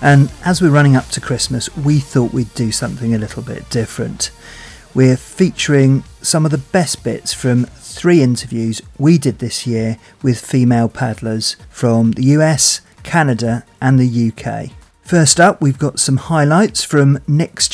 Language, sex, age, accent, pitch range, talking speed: English, male, 40-59, British, 120-145 Hz, 160 wpm